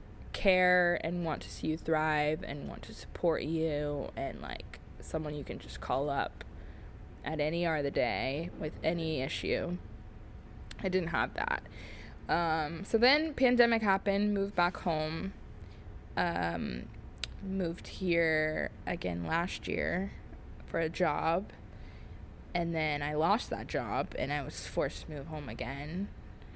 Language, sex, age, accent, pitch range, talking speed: English, female, 20-39, American, 150-190 Hz, 145 wpm